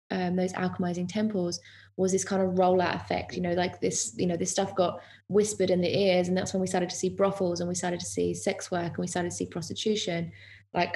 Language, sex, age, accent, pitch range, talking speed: English, female, 20-39, British, 170-190 Hz, 245 wpm